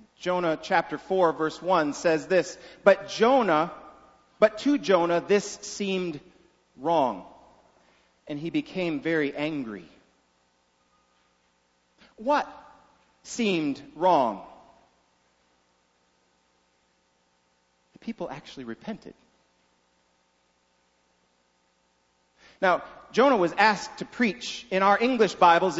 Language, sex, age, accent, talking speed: English, male, 40-59, American, 85 wpm